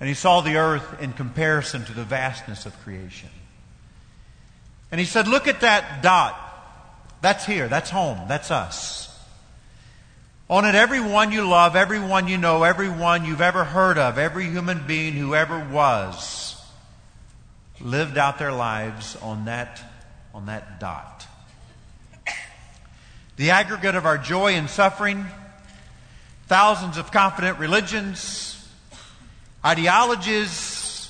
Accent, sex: American, male